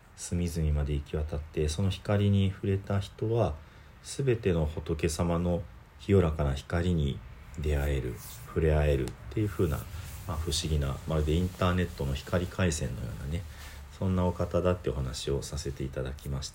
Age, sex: 40-59, male